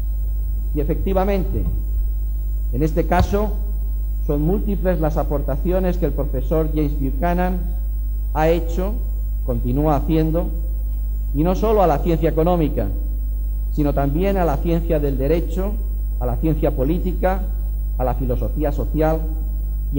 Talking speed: 125 wpm